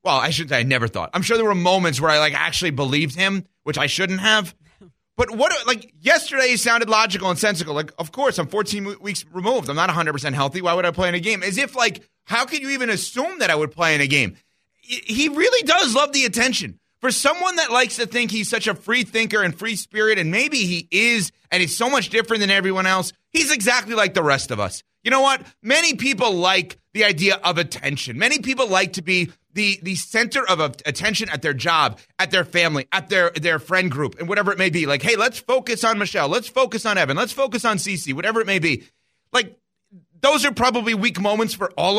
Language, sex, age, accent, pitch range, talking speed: English, male, 30-49, American, 175-245 Hz, 235 wpm